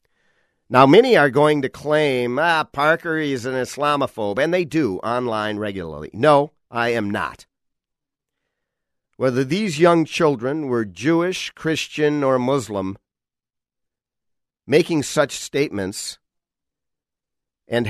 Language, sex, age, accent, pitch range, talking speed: English, male, 50-69, American, 100-130 Hz, 110 wpm